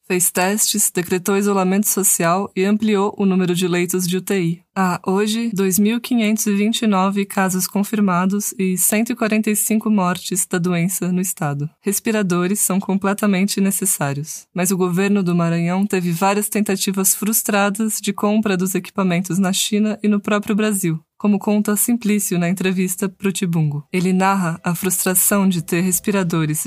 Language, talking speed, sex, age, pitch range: English, 140 wpm, female, 20-39, 185-215 Hz